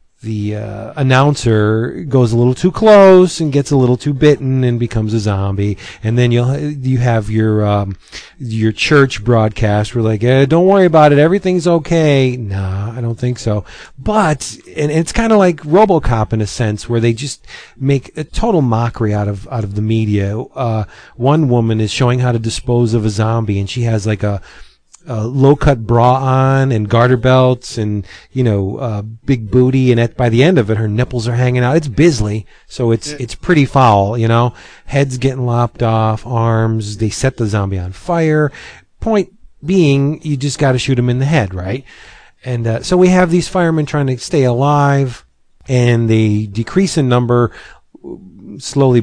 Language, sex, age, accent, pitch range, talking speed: English, male, 40-59, American, 110-140 Hz, 190 wpm